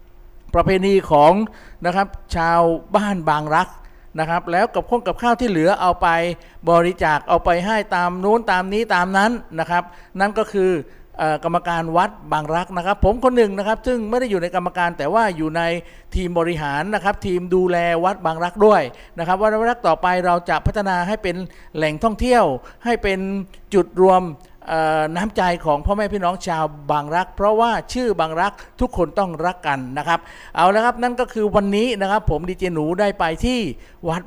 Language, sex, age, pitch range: Thai, male, 60-79, 170-215 Hz